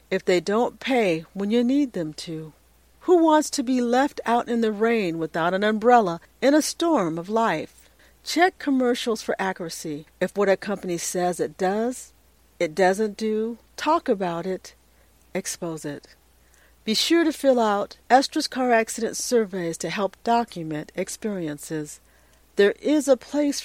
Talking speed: 155 wpm